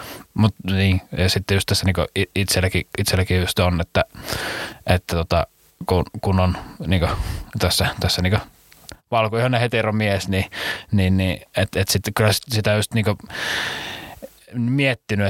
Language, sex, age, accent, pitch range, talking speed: Finnish, male, 20-39, native, 95-115 Hz, 135 wpm